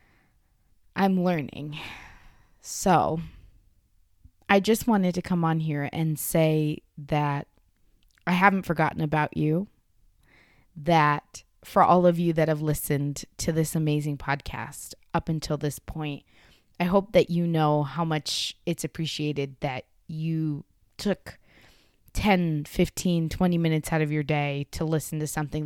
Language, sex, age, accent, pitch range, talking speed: English, female, 20-39, American, 145-175 Hz, 135 wpm